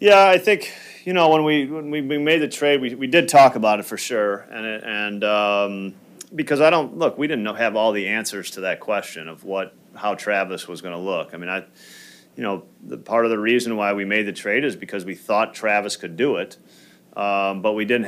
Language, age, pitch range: English, 40-59, 100-115 Hz